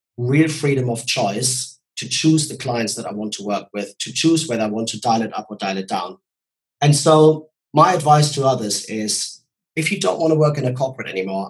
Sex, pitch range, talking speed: male, 115-145 Hz, 230 wpm